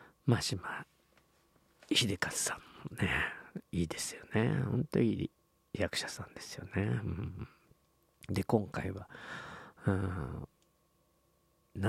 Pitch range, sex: 100-125 Hz, male